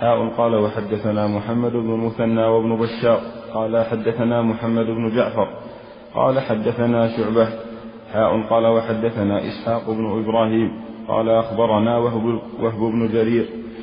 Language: Arabic